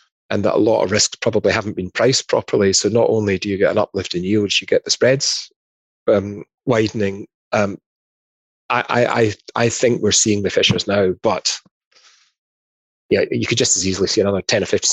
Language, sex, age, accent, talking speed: English, male, 30-49, British, 195 wpm